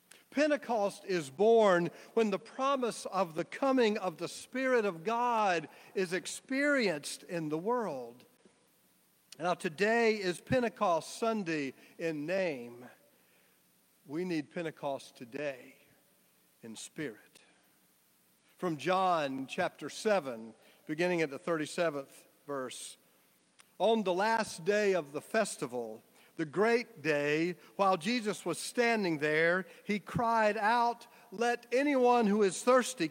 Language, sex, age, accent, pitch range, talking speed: English, male, 50-69, American, 170-235 Hz, 115 wpm